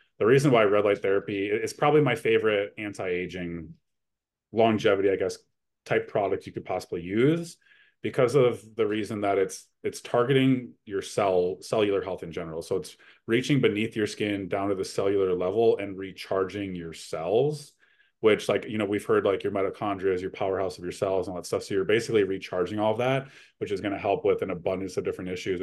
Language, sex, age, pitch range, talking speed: English, male, 30-49, 95-115 Hz, 200 wpm